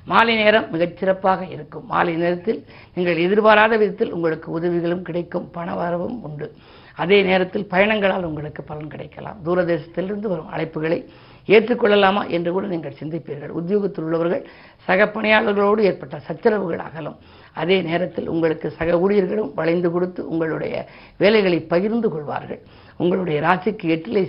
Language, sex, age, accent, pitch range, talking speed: Tamil, female, 50-69, native, 165-200 Hz, 120 wpm